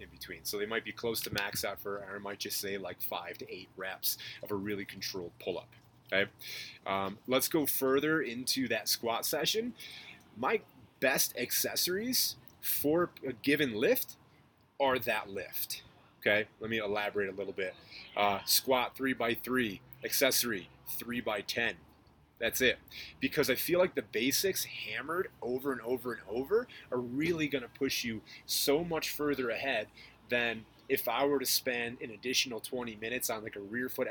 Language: English